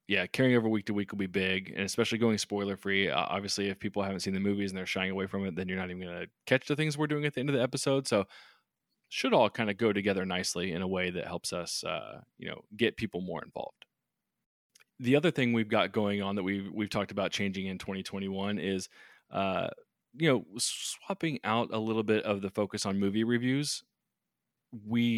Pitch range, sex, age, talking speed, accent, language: 95-115 Hz, male, 20-39, 235 wpm, American, English